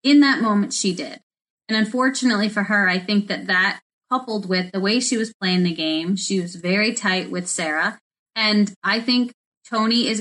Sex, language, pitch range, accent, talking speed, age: female, English, 185-230 Hz, American, 195 wpm, 30-49